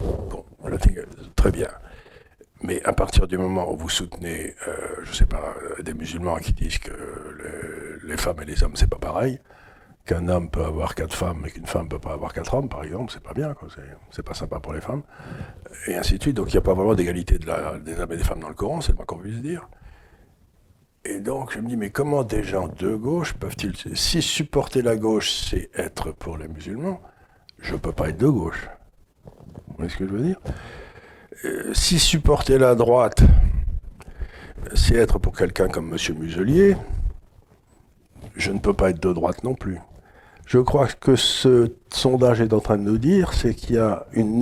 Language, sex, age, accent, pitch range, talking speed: French, male, 60-79, French, 85-120 Hz, 215 wpm